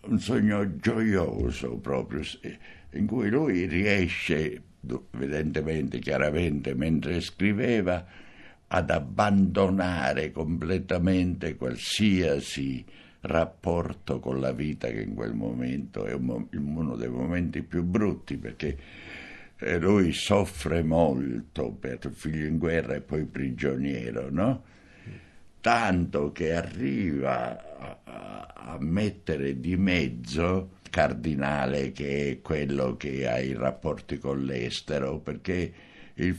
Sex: male